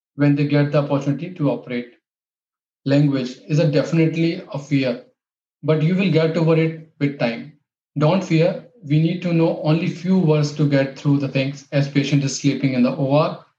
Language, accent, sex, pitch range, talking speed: English, Indian, male, 140-165 Hz, 190 wpm